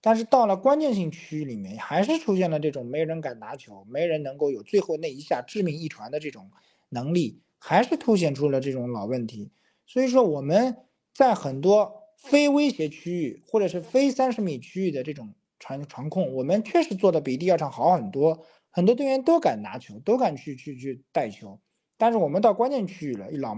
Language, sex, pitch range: Chinese, male, 130-205 Hz